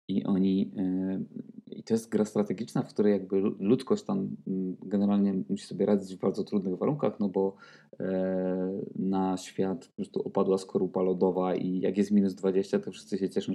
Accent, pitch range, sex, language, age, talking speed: native, 95-105 Hz, male, Polish, 20-39, 175 wpm